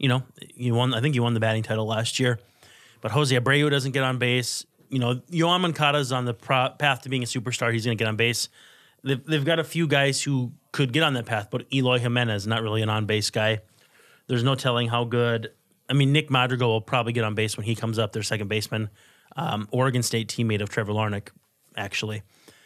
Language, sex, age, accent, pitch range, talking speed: English, male, 30-49, American, 115-140 Hz, 235 wpm